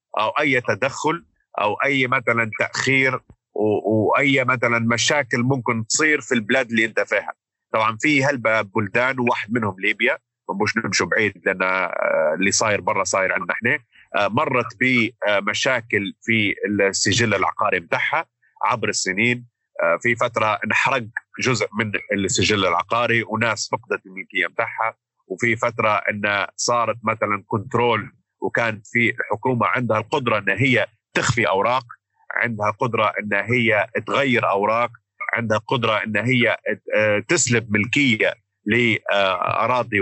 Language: Arabic